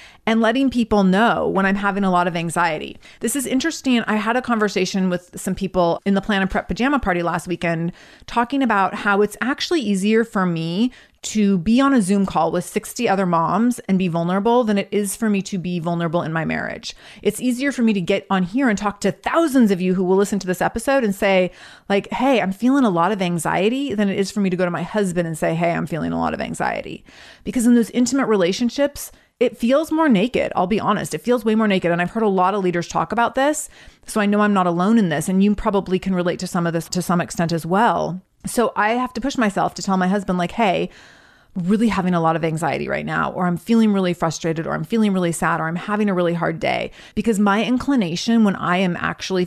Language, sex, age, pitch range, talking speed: English, female, 30-49, 180-225 Hz, 245 wpm